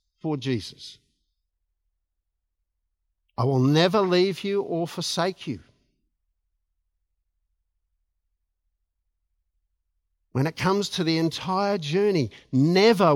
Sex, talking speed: male, 80 wpm